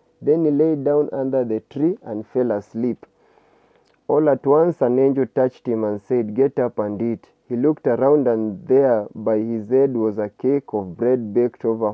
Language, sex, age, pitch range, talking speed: English, male, 30-49, 115-140 Hz, 190 wpm